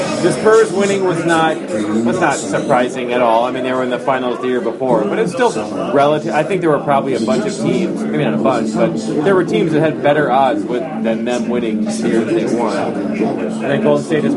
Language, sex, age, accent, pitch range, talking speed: English, male, 30-49, American, 125-165 Hz, 245 wpm